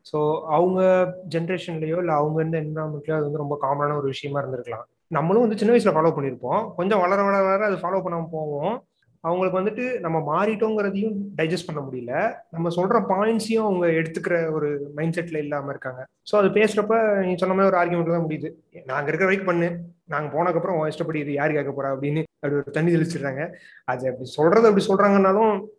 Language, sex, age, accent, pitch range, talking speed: Tamil, male, 30-49, native, 155-195 Hz, 175 wpm